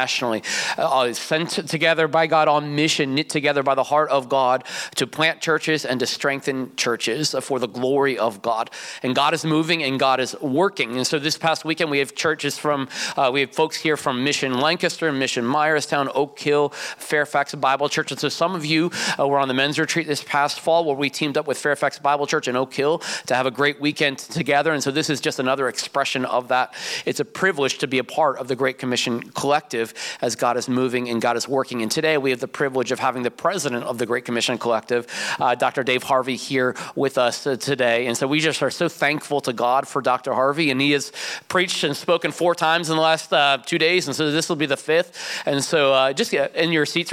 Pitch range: 130-160 Hz